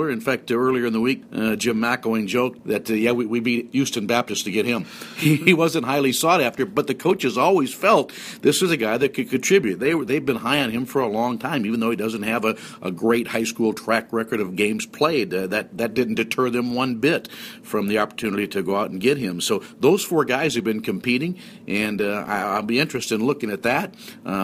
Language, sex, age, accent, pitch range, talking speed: English, male, 50-69, American, 115-130 Hz, 245 wpm